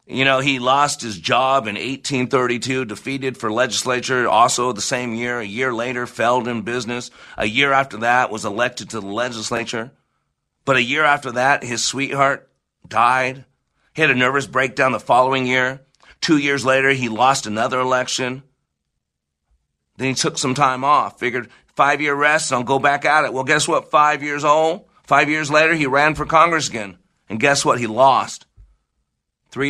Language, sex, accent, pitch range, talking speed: English, male, American, 120-150 Hz, 175 wpm